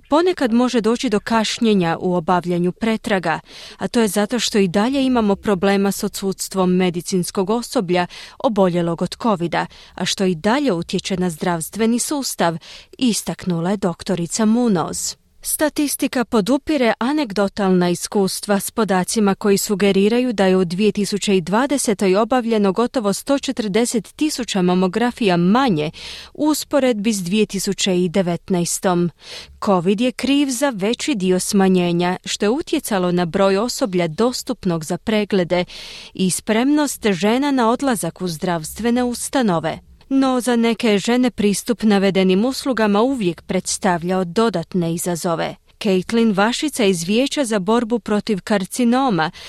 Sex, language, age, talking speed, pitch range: female, Croatian, 30-49, 120 wpm, 185-245 Hz